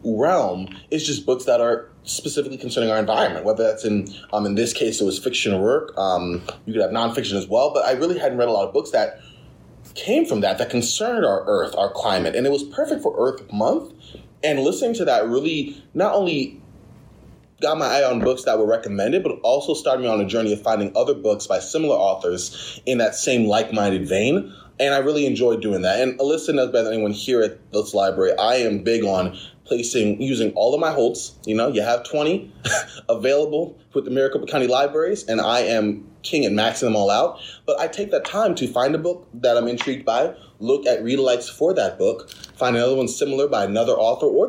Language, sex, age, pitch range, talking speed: English, male, 20-39, 110-155 Hz, 215 wpm